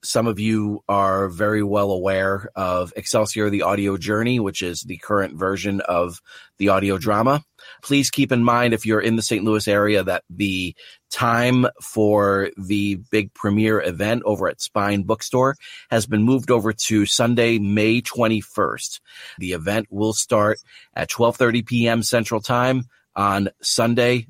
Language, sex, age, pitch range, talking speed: English, male, 30-49, 100-120 Hz, 155 wpm